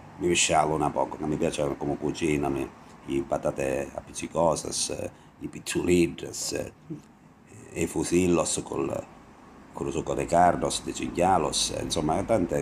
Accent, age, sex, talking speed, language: native, 50-69, male, 135 wpm, Italian